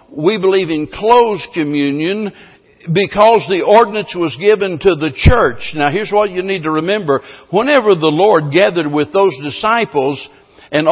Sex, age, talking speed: male, 60-79, 155 wpm